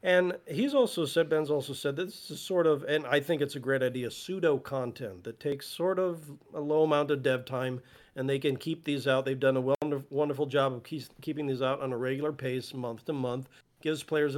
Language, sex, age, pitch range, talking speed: English, male, 40-59, 130-155 Hz, 220 wpm